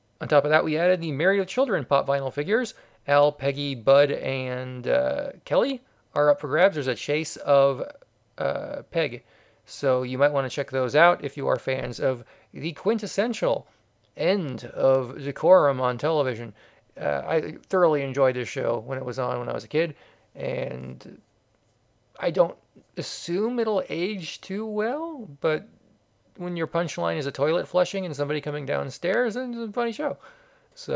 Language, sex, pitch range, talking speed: English, male, 135-185 Hz, 175 wpm